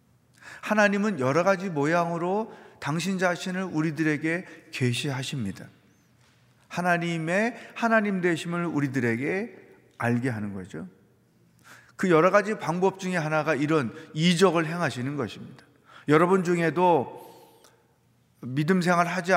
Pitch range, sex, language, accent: 135-180 Hz, male, Korean, native